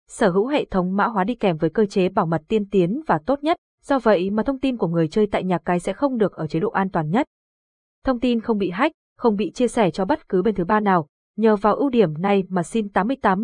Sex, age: female, 20-39